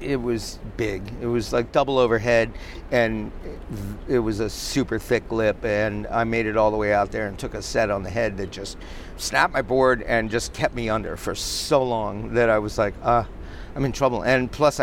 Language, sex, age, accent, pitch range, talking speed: English, male, 50-69, American, 100-120 Hz, 225 wpm